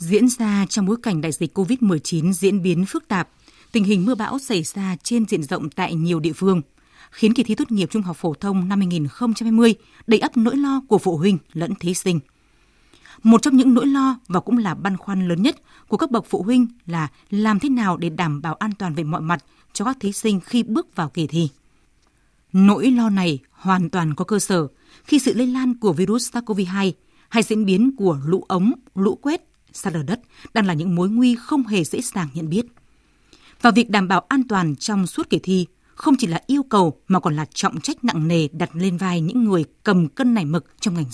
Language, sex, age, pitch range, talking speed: Vietnamese, female, 20-39, 175-235 Hz, 225 wpm